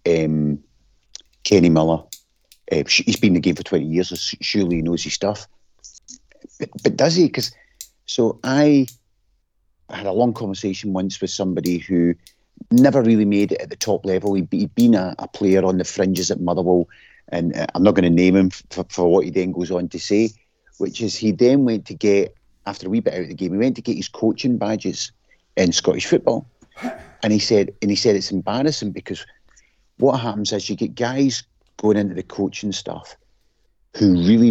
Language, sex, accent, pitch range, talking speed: English, male, British, 90-110 Hz, 200 wpm